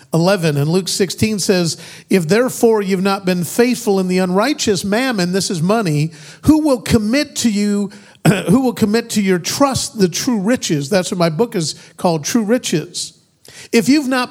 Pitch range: 185-240 Hz